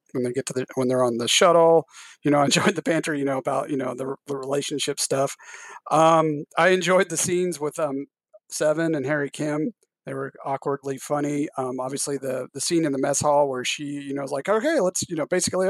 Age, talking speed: 30-49, 230 wpm